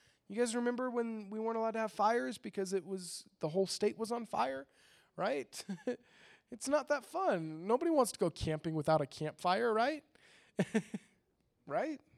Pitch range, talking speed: 170-215 Hz, 170 wpm